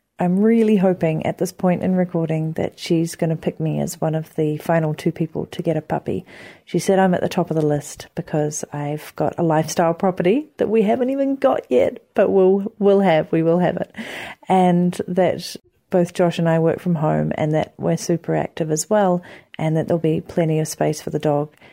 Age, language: 40-59, English